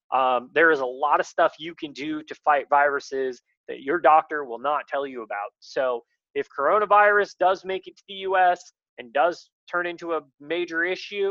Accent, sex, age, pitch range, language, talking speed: American, male, 20-39, 140-180 Hz, English, 195 wpm